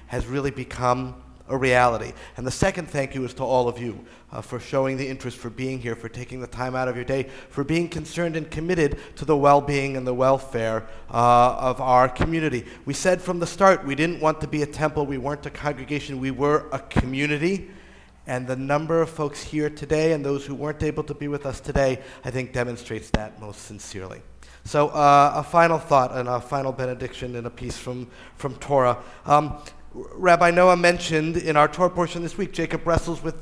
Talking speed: 210 wpm